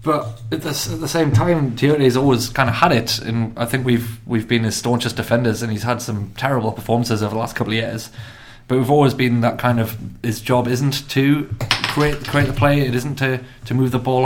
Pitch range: 115-130 Hz